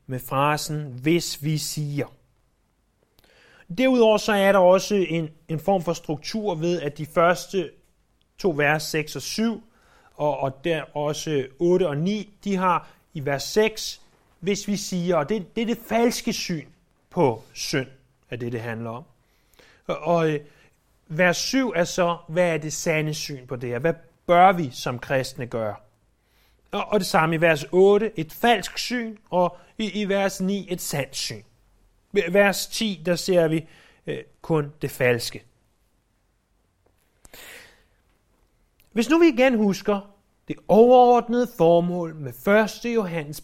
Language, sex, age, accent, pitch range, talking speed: Danish, male, 30-49, native, 140-205 Hz, 150 wpm